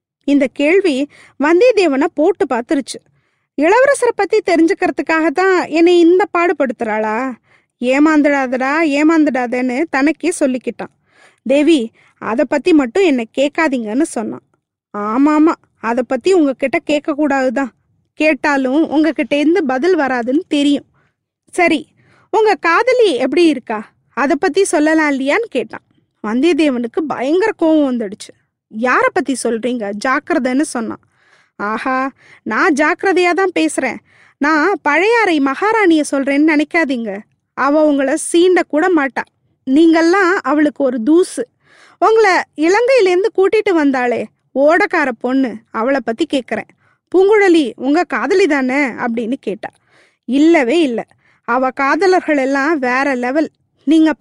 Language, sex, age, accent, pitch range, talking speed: Tamil, female, 20-39, native, 265-345 Hz, 105 wpm